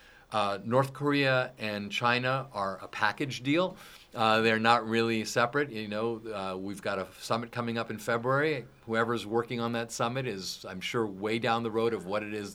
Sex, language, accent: male, English, American